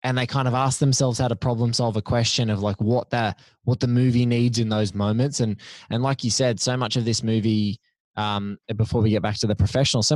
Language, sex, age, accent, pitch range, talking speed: English, male, 20-39, Australian, 105-120 Hz, 250 wpm